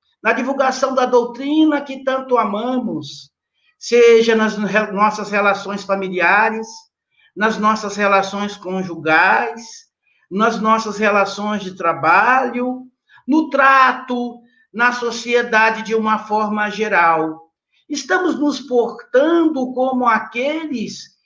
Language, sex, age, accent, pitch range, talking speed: Portuguese, male, 60-79, Brazilian, 215-295 Hz, 95 wpm